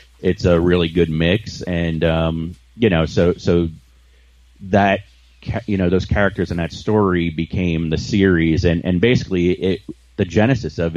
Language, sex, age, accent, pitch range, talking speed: English, male, 30-49, American, 80-90 Hz, 160 wpm